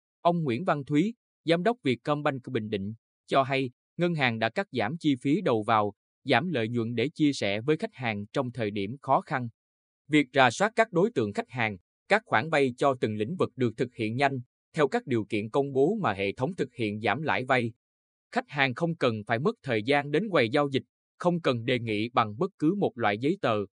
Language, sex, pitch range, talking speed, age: Vietnamese, male, 110-150 Hz, 225 wpm, 20-39